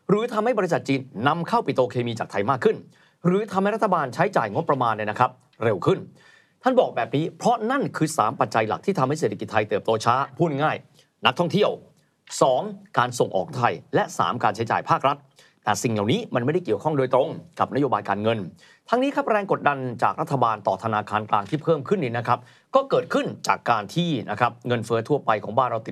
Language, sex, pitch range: Thai, male, 120-175 Hz